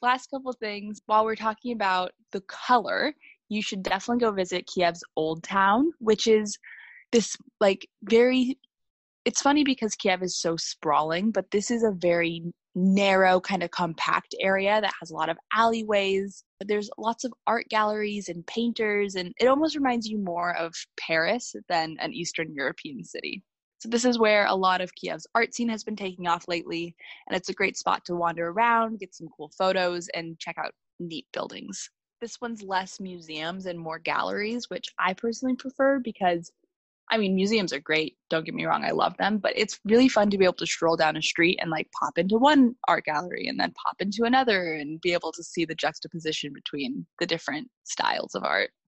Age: 20-39